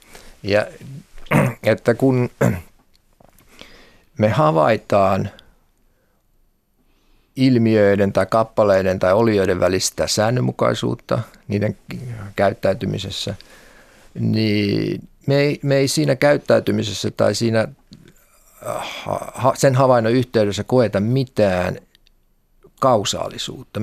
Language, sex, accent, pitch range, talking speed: Finnish, male, native, 95-125 Hz, 75 wpm